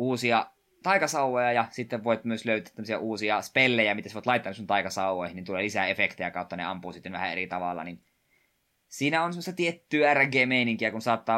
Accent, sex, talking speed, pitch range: native, male, 190 wpm, 110-135 Hz